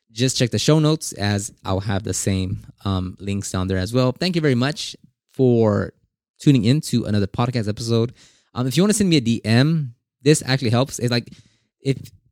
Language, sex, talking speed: English, male, 200 wpm